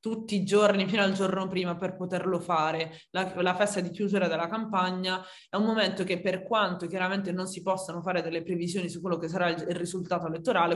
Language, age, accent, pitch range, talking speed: Italian, 20-39, native, 165-190 Hz, 210 wpm